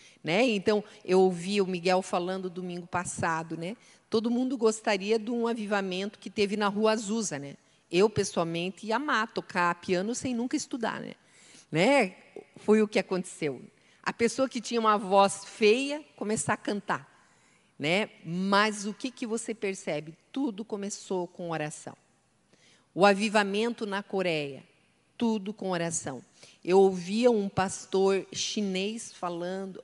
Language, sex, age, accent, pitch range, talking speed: Portuguese, female, 40-59, Brazilian, 180-225 Hz, 145 wpm